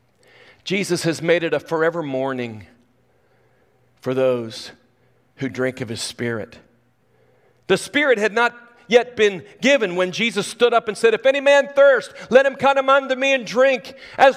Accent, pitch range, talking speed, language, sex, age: American, 200-285 Hz, 165 wpm, English, male, 40-59